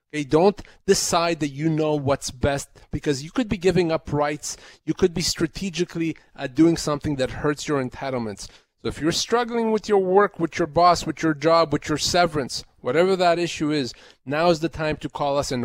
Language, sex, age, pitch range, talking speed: English, male, 30-49, 125-160 Hz, 205 wpm